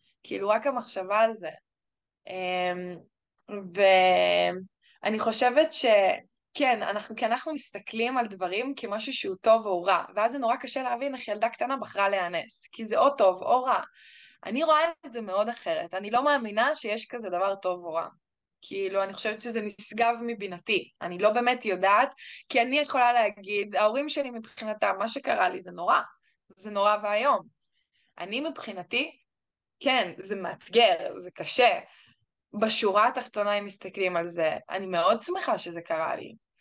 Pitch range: 200-280 Hz